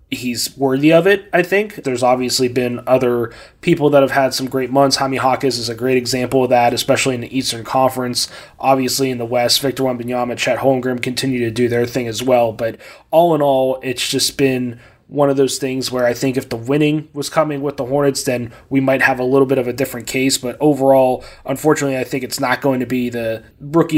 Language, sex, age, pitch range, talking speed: English, male, 20-39, 125-140 Hz, 225 wpm